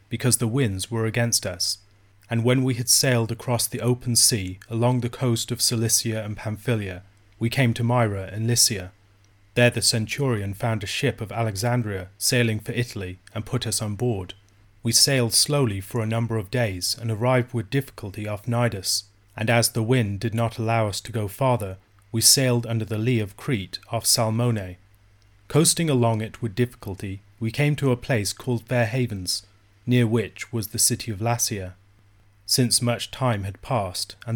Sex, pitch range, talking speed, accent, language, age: male, 100-120 Hz, 180 wpm, British, English, 30-49